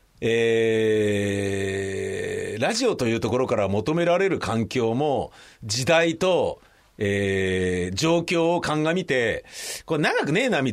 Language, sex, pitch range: Japanese, male, 95-155 Hz